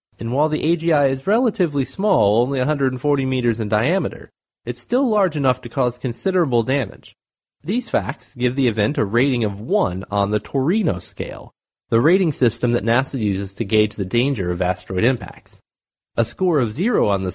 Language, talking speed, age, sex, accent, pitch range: English, 180 wpm, 30-49, male, American, 110-155 Hz